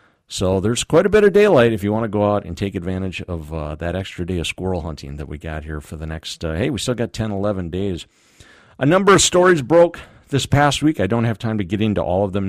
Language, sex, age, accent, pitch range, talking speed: English, male, 50-69, American, 95-130 Hz, 275 wpm